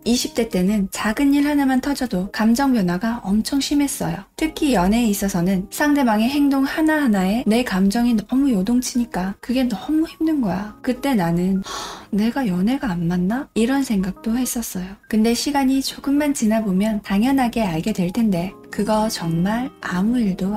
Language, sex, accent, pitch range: Korean, female, native, 195-250 Hz